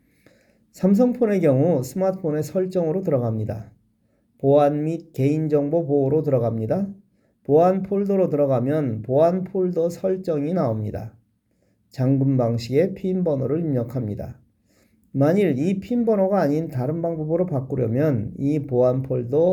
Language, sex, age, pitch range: Korean, male, 40-59, 120-180 Hz